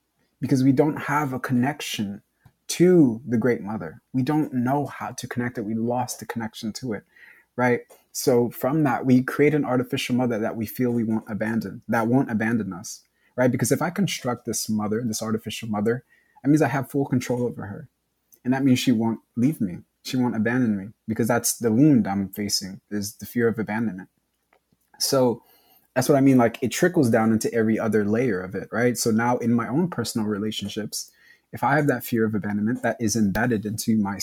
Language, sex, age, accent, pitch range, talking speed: English, male, 20-39, American, 110-130 Hz, 205 wpm